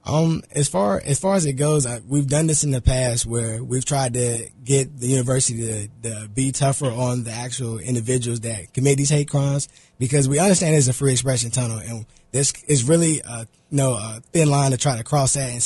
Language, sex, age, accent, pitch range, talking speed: English, male, 20-39, American, 115-135 Hz, 220 wpm